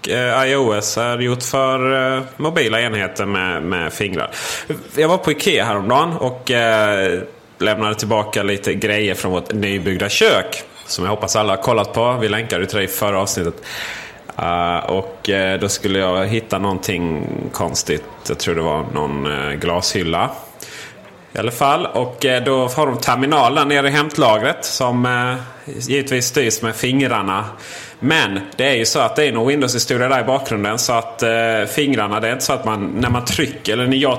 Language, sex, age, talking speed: Swedish, male, 30-49, 165 wpm